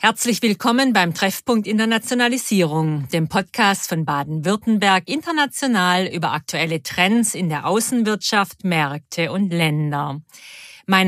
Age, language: 50-69, German